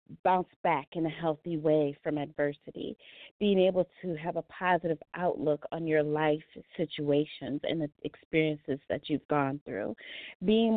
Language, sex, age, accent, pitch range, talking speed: English, female, 30-49, American, 160-185 Hz, 150 wpm